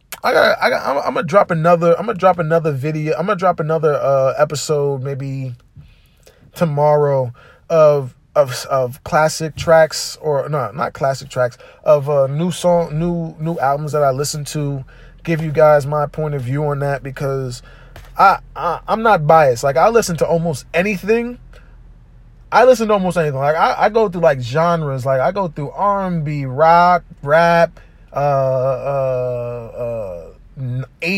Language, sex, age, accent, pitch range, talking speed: English, male, 20-39, American, 135-165 Hz, 165 wpm